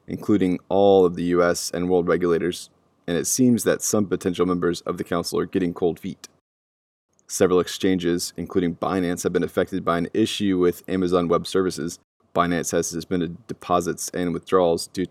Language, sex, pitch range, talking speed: English, male, 85-95 Hz, 170 wpm